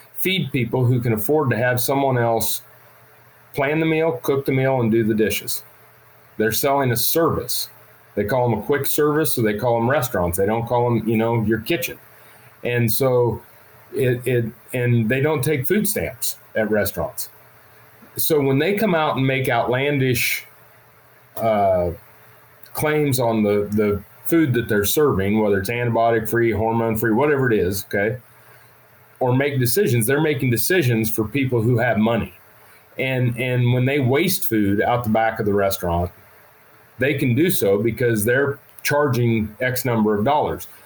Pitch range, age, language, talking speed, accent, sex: 110-135 Hz, 40-59, English, 170 wpm, American, male